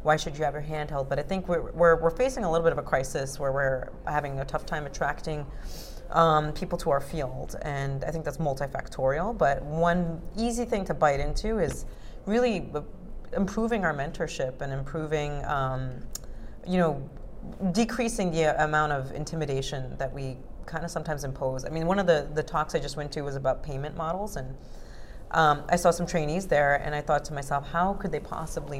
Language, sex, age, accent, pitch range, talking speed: English, female, 30-49, American, 140-175 Hz, 200 wpm